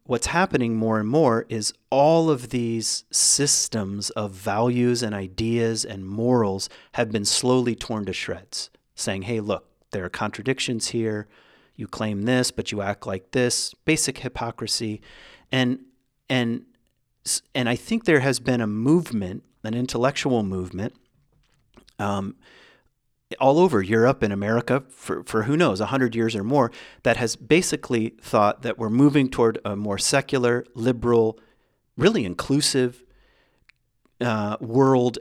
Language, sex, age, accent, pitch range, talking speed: English, male, 40-59, American, 105-130 Hz, 145 wpm